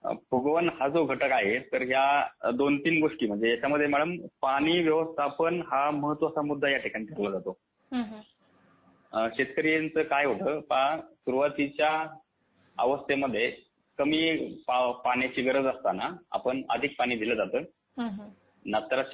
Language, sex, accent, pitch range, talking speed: Hindi, male, native, 125-150 Hz, 70 wpm